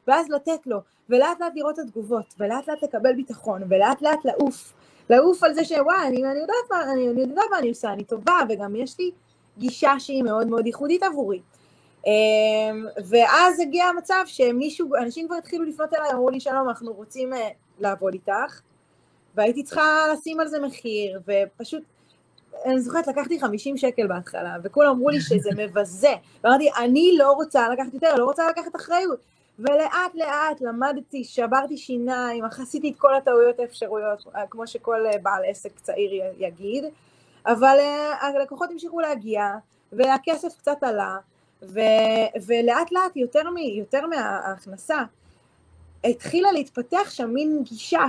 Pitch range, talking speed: 220-300 Hz, 150 wpm